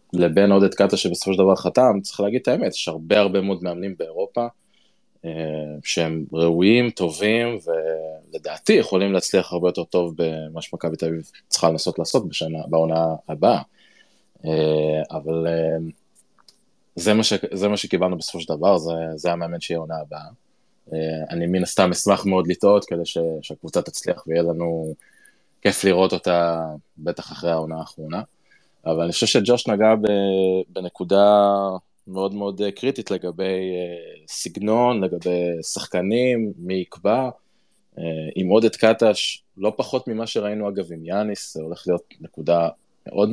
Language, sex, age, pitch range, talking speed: Hebrew, male, 20-39, 80-105 Hz, 140 wpm